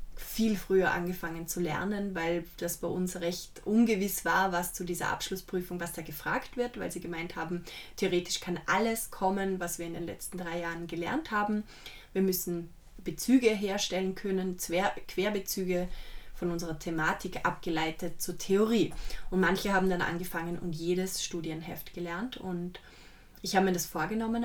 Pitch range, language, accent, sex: 175-215 Hz, German, German, female